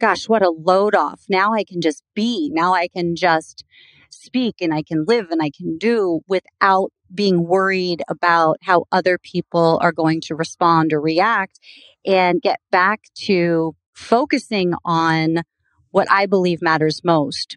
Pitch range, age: 165-190 Hz, 30-49